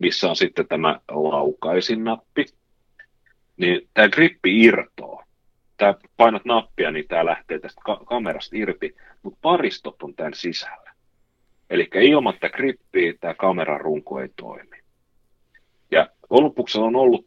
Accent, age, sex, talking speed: native, 40-59, male, 120 wpm